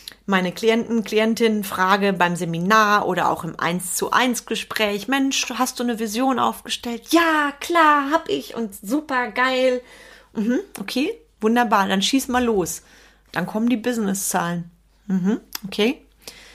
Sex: female